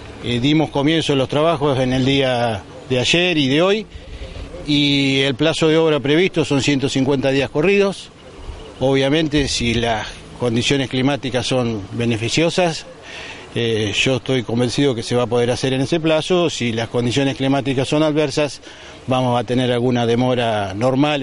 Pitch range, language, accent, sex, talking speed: 130-160 Hz, Spanish, Argentinian, male, 160 wpm